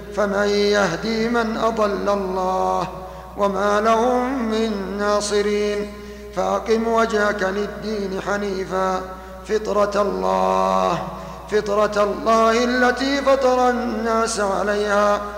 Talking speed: 80 wpm